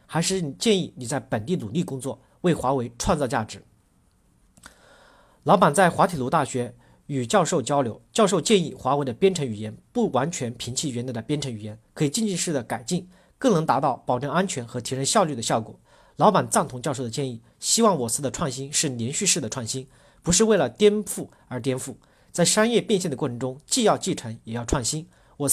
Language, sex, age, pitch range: Chinese, male, 50-69, 125-185 Hz